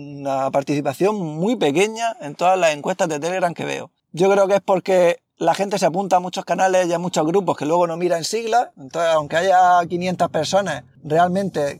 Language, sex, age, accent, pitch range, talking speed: Spanish, male, 20-39, Spanish, 155-195 Hz, 205 wpm